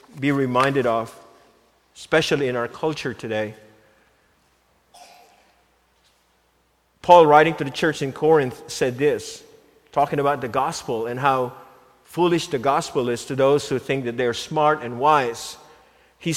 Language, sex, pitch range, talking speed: English, male, 155-205 Hz, 140 wpm